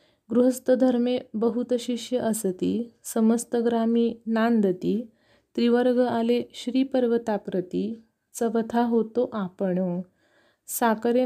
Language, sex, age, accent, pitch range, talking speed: Marathi, female, 30-49, native, 210-245 Hz, 70 wpm